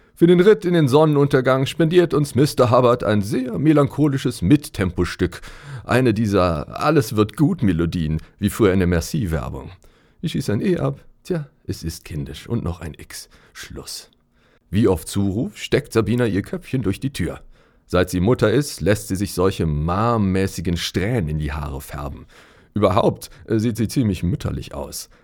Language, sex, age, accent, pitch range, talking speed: German, male, 40-59, German, 85-140 Hz, 155 wpm